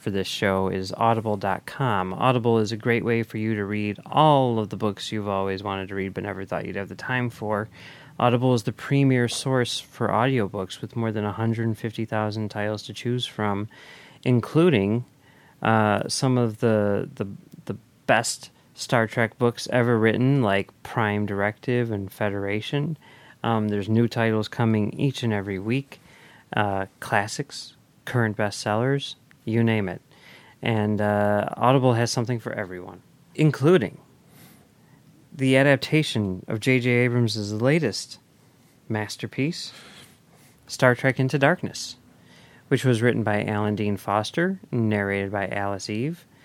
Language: English